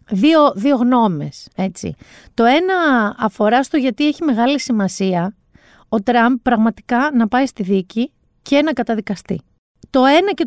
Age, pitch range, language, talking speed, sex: 40-59, 200-295 Hz, Greek, 145 wpm, female